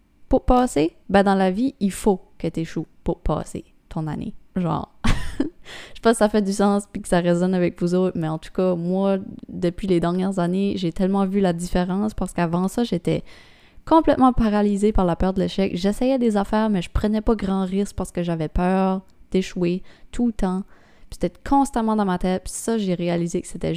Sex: female